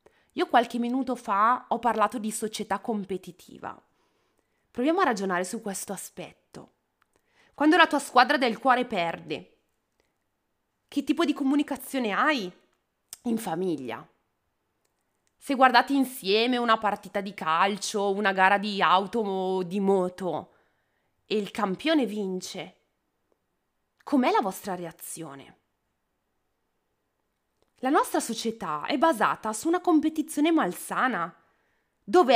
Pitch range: 200-295 Hz